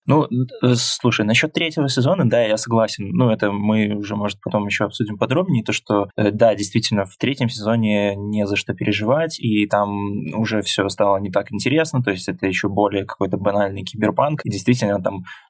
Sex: male